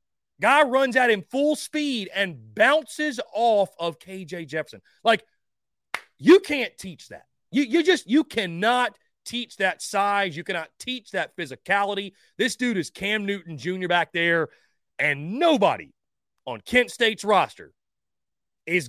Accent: American